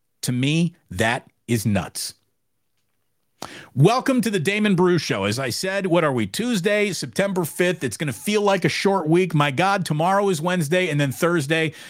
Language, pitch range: English, 130-180 Hz